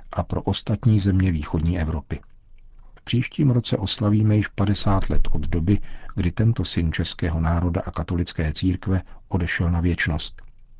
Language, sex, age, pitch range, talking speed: Czech, male, 50-69, 85-100 Hz, 145 wpm